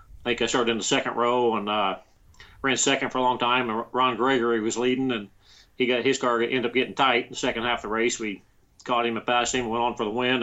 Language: English